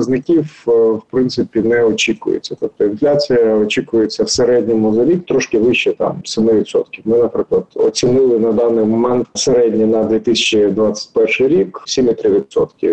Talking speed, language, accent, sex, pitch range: 110 wpm, Ukrainian, native, male, 115-175 Hz